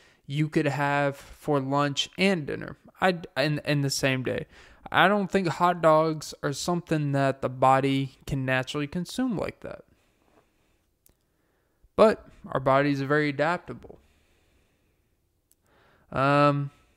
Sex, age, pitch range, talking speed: male, 20-39, 125-165 Hz, 125 wpm